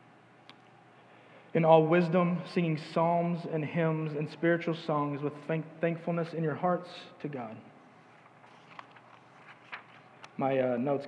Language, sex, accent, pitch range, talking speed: English, male, American, 155-195 Hz, 115 wpm